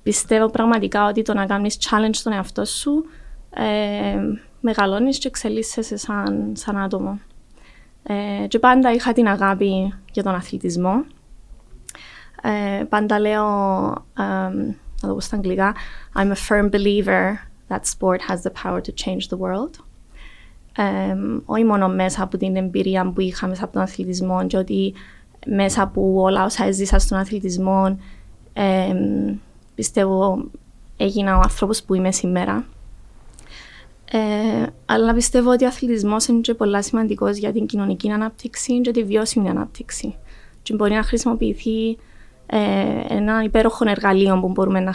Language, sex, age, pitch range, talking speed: Greek, female, 20-39, 190-225 Hz, 135 wpm